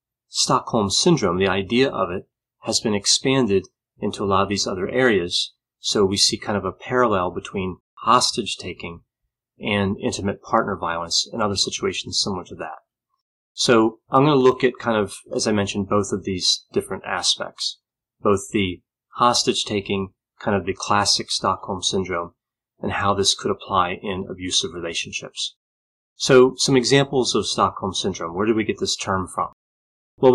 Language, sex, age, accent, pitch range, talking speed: English, male, 30-49, American, 100-125 Hz, 160 wpm